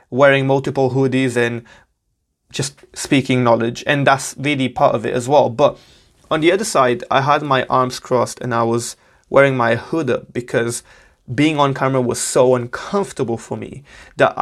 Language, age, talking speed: English, 20-39, 175 wpm